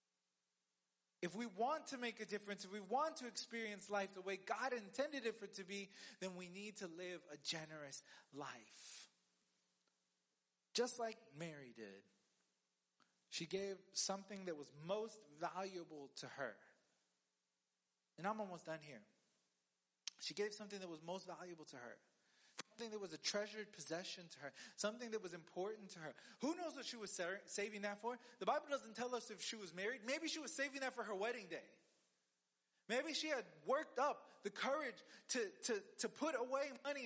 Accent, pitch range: American, 165-260 Hz